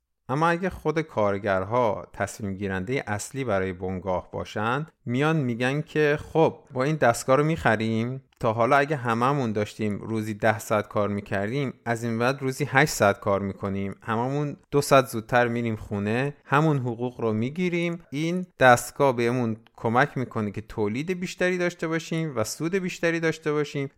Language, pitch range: Persian, 105-140 Hz